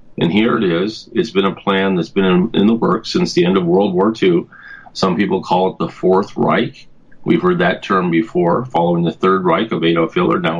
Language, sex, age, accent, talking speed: English, male, 40-59, American, 230 wpm